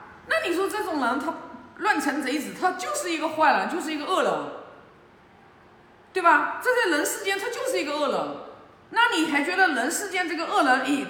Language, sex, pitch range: Chinese, female, 225-340 Hz